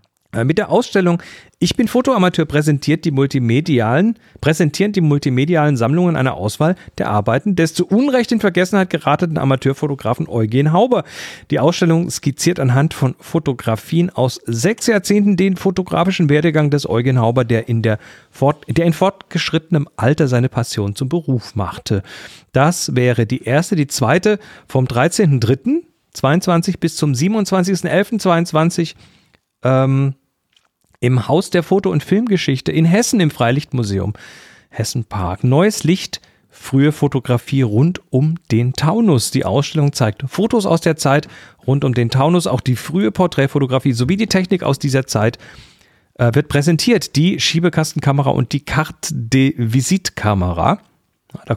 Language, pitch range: German, 130-175 Hz